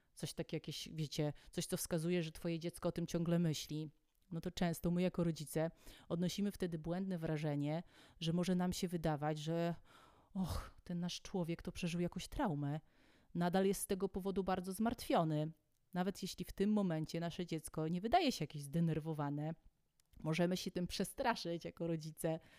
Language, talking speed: Polish, 165 wpm